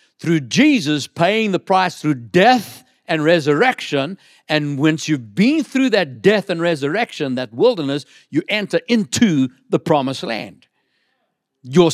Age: 60-79